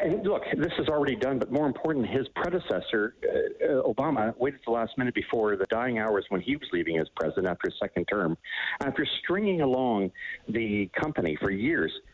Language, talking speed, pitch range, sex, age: English, 185 wpm, 105-160 Hz, male, 50-69